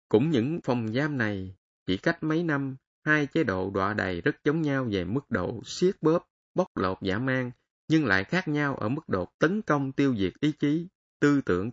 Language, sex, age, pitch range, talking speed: Vietnamese, male, 20-39, 100-150 Hz, 210 wpm